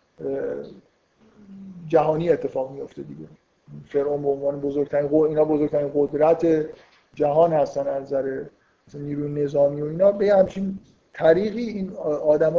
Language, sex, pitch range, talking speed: Persian, male, 145-160 Hz, 130 wpm